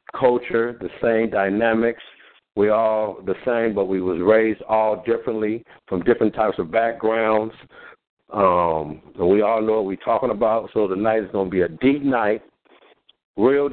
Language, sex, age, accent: English, male, 60-79, American